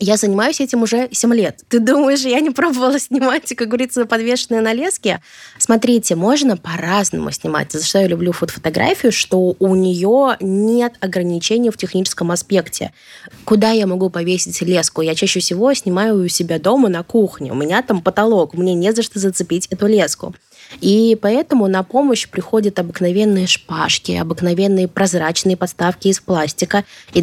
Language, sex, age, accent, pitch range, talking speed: Russian, female, 20-39, native, 175-220 Hz, 160 wpm